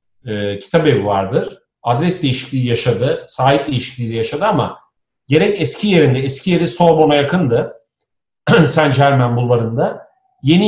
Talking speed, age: 130 wpm, 50-69